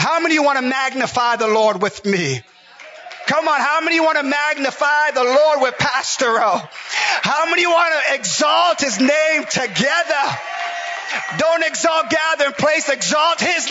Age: 30-49